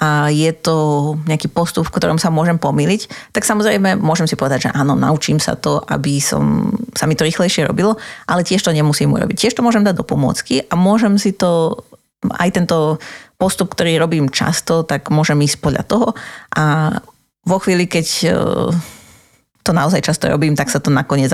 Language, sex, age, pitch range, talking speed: Slovak, female, 30-49, 145-185 Hz, 185 wpm